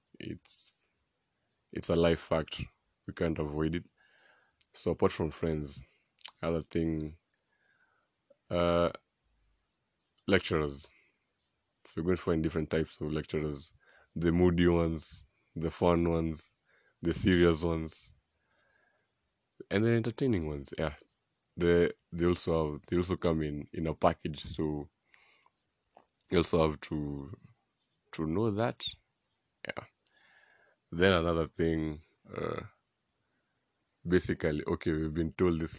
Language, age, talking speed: English, 20-39, 115 wpm